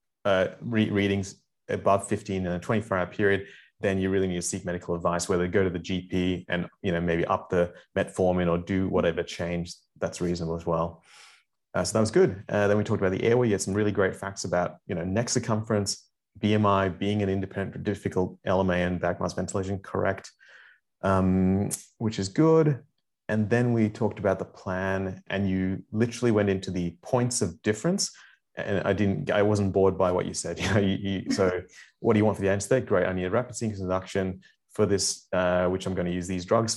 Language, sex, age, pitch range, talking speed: English, male, 30-49, 90-110 Hz, 205 wpm